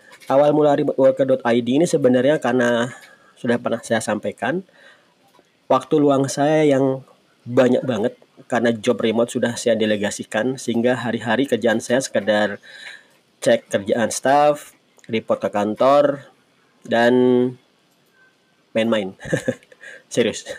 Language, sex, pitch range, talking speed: Indonesian, male, 115-140 Hz, 100 wpm